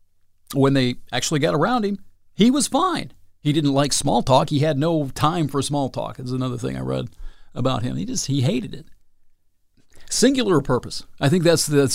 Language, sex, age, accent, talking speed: English, male, 40-59, American, 195 wpm